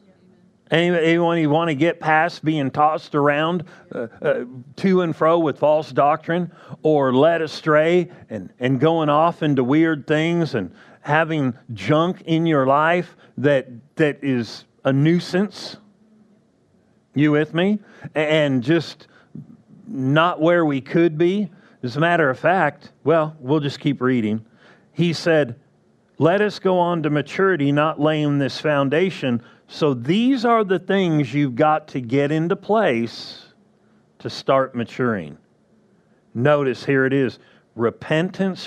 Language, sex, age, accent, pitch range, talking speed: English, male, 40-59, American, 135-175 Hz, 140 wpm